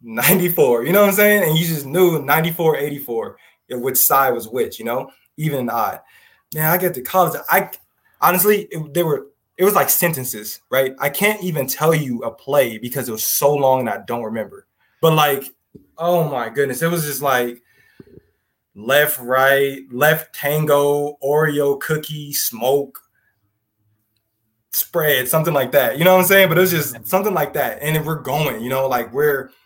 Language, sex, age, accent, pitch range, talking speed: English, male, 20-39, American, 135-180 Hz, 185 wpm